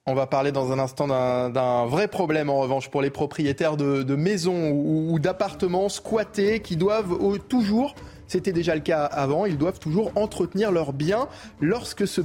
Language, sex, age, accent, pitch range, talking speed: French, male, 20-39, French, 140-195 Hz, 185 wpm